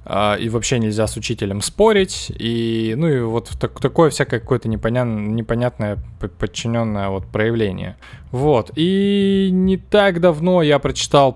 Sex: male